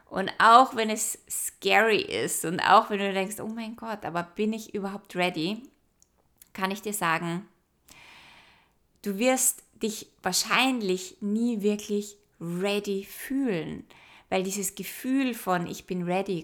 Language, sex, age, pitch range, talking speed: German, female, 20-39, 175-215 Hz, 140 wpm